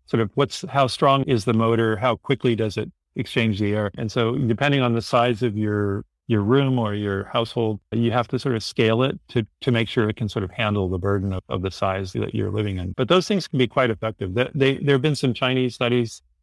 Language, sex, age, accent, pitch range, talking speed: English, male, 50-69, American, 105-130 Hz, 250 wpm